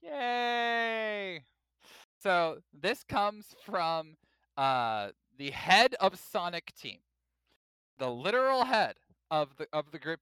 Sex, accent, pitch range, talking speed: male, American, 130-195 Hz, 110 wpm